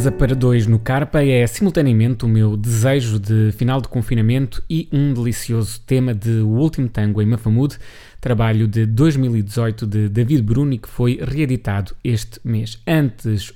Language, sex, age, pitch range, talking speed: Portuguese, male, 20-39, 110-140 Hz, 160 wpm